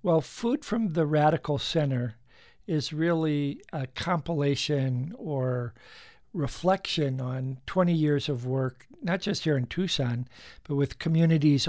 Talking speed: 130 wpm